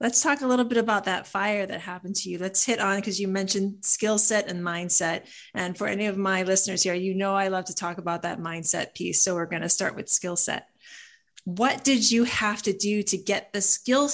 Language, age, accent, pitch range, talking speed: English, 30-49, American, 185-235 Hz, 240 wpm